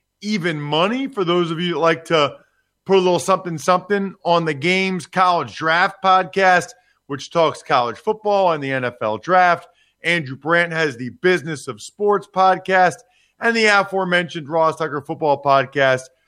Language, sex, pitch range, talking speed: English, male, 160-195 Hz, 160 wpm